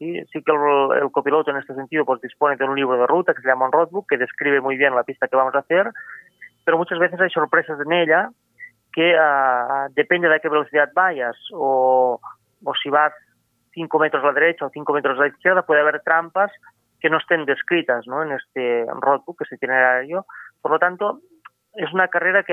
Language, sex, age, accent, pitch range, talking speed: Spanish, male, 30-49, Spanish, 135-165 Hz, 220 wpm